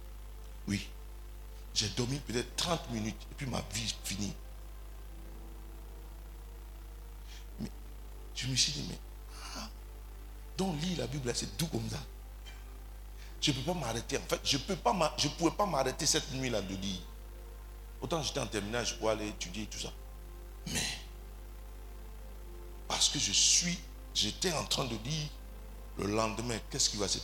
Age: 60-79